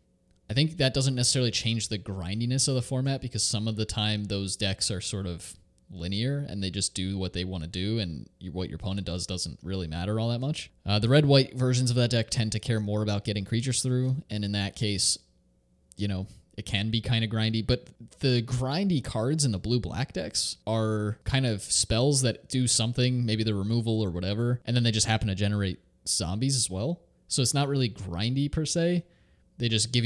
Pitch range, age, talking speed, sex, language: 100-130 Hz, 20-39, 220 wpm, male, English